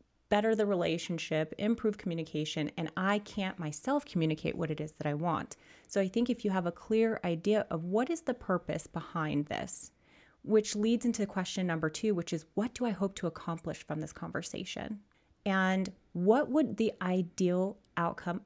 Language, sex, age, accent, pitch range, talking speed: English, female, 30-49, American, 165-205 Hz, 180 wpm